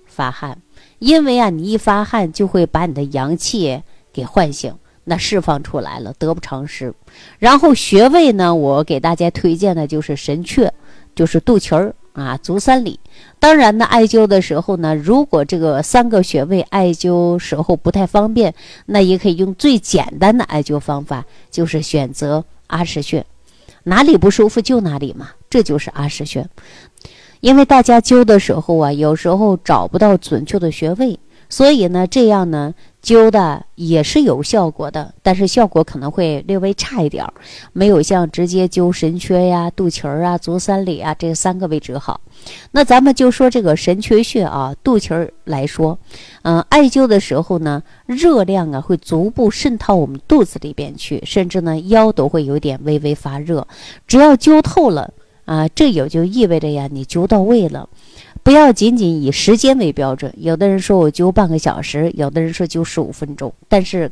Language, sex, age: Chinese, female, 50-69